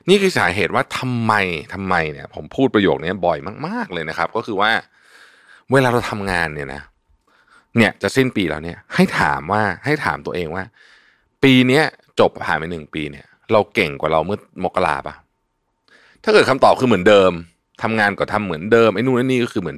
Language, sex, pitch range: Thai, male, 85-125 Hz